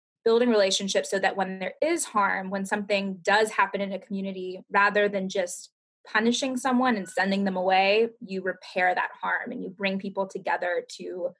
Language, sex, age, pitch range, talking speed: English, female, 20-39, 190-220 Hz, 180 wpm